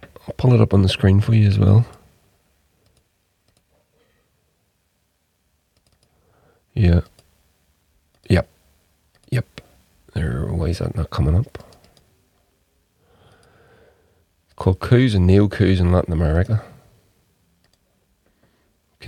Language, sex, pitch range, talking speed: English, male, 80-100 Hz, 95 wpm